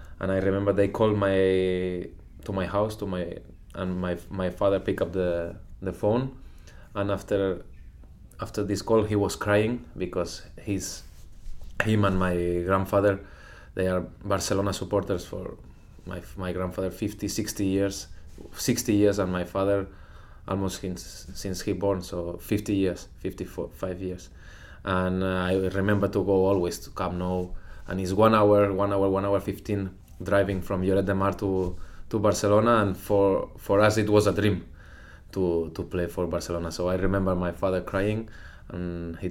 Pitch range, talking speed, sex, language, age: 90-100 Hz, 165 wpm, male, Danish, 20-39